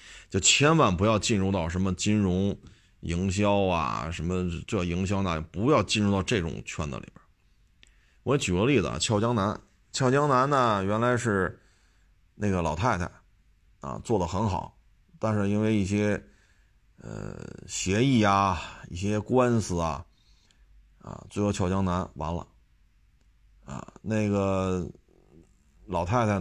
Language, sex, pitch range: Chinese, male, 90-105 Hz